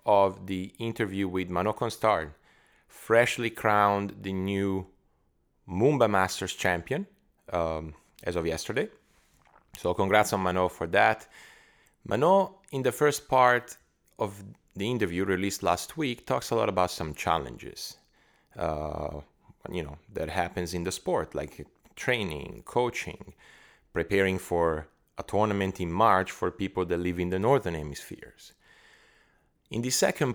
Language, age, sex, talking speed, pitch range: English, 30-49, male, 135 wpm, 85-105 Hz